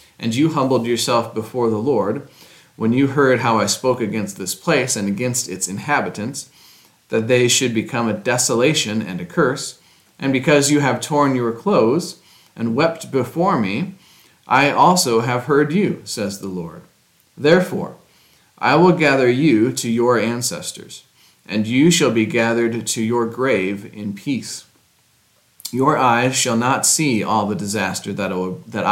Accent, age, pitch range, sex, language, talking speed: American, 40-59, 110-145 Hz, male, English, 160 wpm